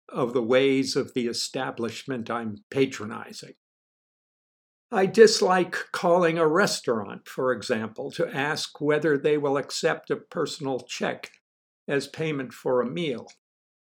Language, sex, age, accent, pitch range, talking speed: English, male, 60-79, American, 140-180 Hz, 125 wpm